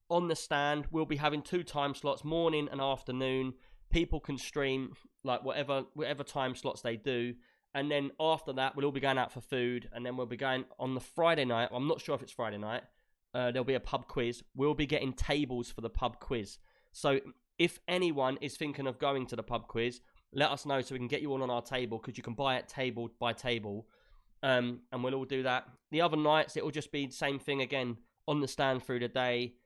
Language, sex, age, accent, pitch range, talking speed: English, male, 20-39, British, 120-145 Hz, 235 wpm